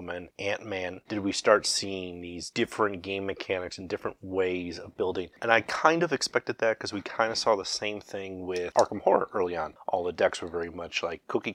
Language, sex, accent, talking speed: English, male, American, 220 wpm